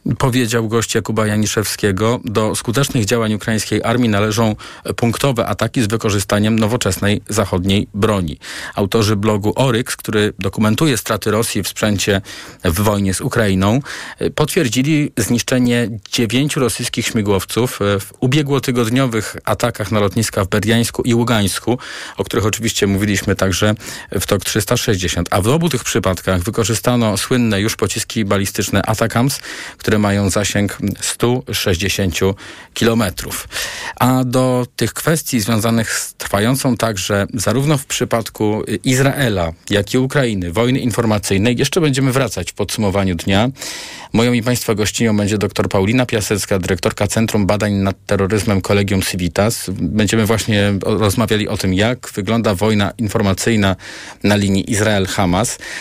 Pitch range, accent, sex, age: 100-120 Hz, native, male, 40-59